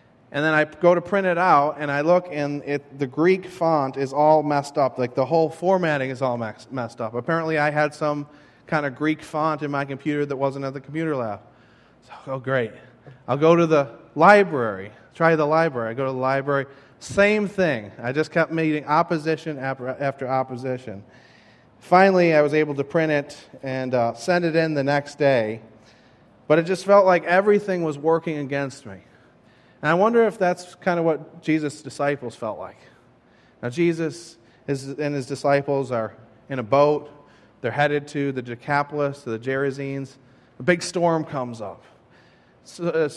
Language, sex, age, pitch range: English, male, 30-49, 135-165 Hz